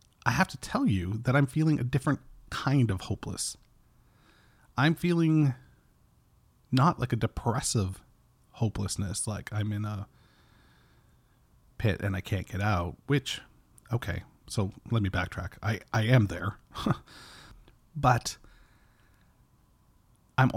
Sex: male